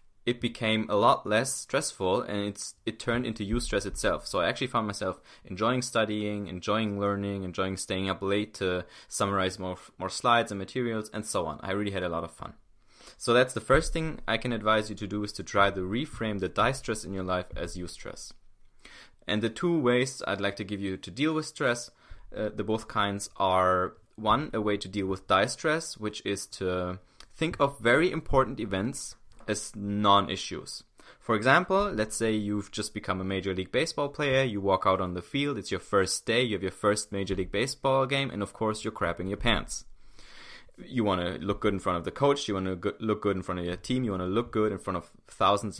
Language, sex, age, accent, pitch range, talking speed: English, male, 20-39, German, 95-120 Hz, 225 wpm